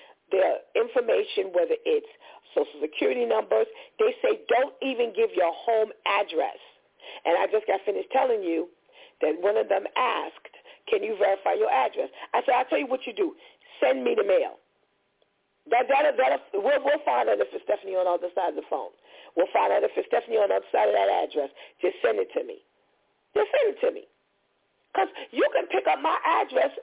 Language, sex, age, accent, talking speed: English, female, 40-59, American, 195 wpm